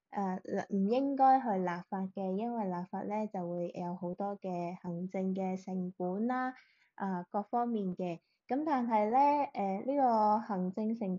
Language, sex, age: Chinese, female, 10-29